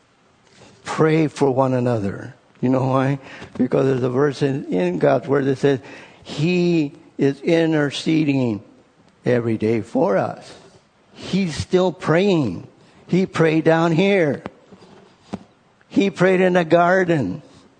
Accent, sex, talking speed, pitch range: American, male, 120 wpm, 140-185 Hz